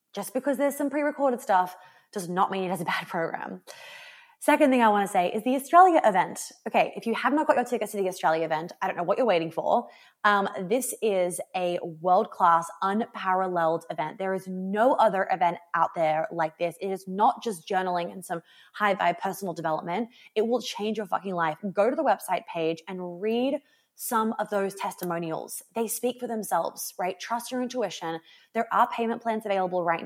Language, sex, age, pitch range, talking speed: English, female, 20-39, 180-220 Hz, 200 wpm